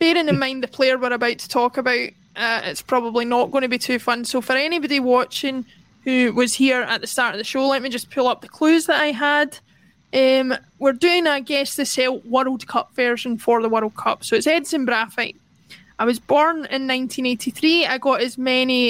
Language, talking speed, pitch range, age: English, 205 wpm, 235-275 Hz, 20-39